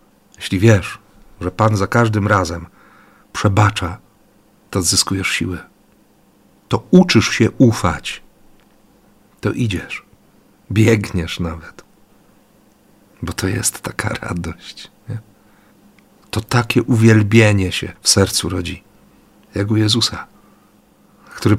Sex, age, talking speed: male, 50-69, 100 wpm